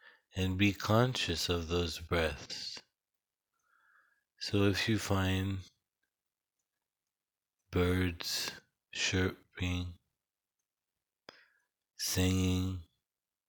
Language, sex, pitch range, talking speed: English, male, 85-95 Hz, 60 wpm